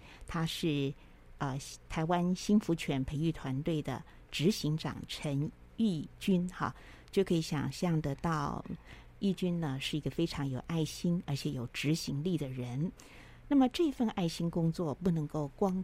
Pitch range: 145-190 Hz